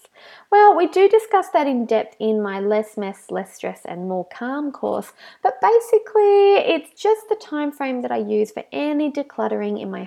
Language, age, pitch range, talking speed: English, 20-39, 220-295 Hz, 190 wpm